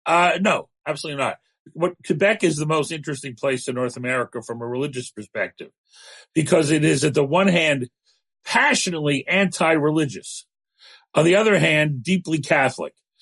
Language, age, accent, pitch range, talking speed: English, 40-59, American, 130-165 Hz, 150 wpm